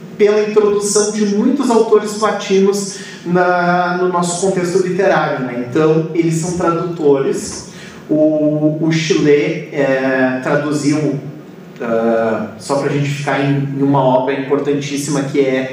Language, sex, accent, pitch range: Portuguese, male, Brazilian, 140-185 Hz